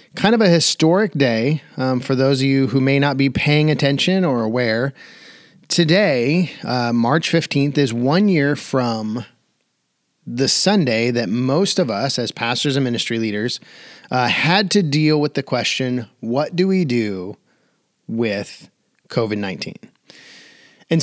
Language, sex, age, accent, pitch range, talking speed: English, male, 30-49, American, 125-160 Hz, 150 wpm